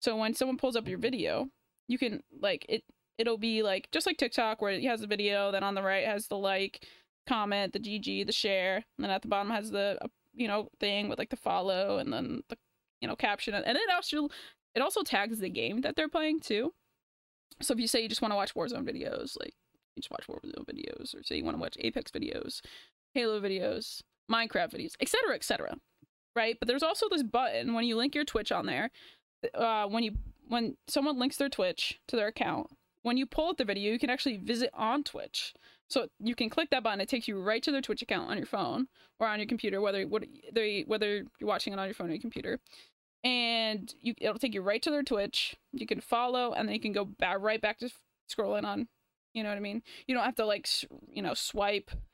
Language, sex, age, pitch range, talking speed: English, female, 20-39, 205-260 Hz, 240 wpm